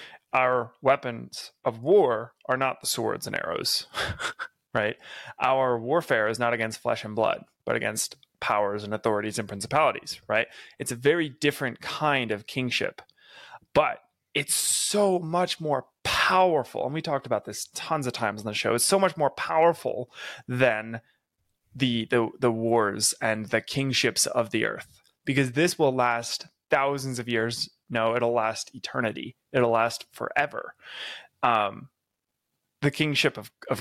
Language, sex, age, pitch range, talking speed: English, male, 20-39, 115-155 Hz, 155 wpm